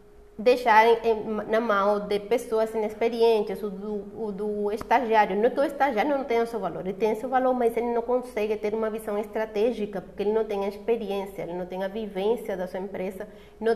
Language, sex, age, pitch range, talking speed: Portuguese, female, 30-49, 205-245 Hz, 210 wpm